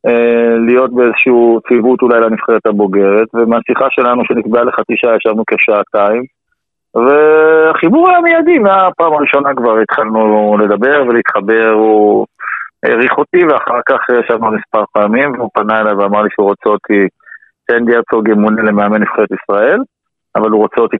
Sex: male